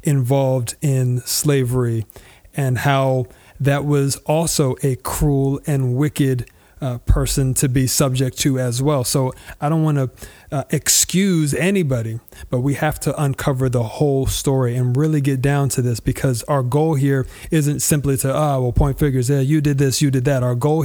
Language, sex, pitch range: English, male, 130-150 Hz